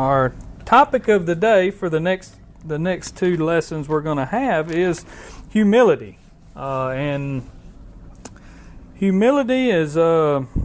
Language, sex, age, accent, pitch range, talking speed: English, male, 40-59, American, 135-185 Hz, 130 wpm